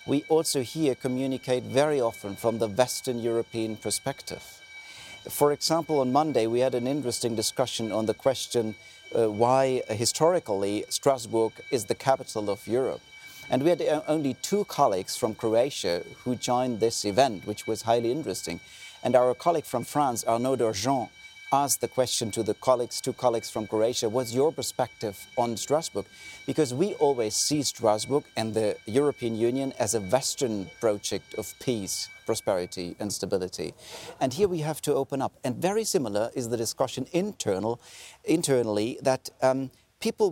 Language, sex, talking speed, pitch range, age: Polish, male, 160 wpm, 115-140 Hz, 40-59